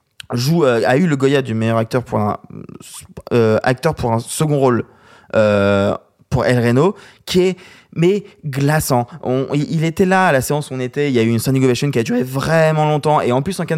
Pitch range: 120-150 Hz